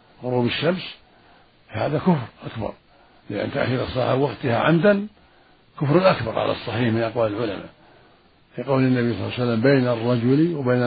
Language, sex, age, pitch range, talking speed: Arabic, male, 60-79, 115-140 Hz, 150 wpm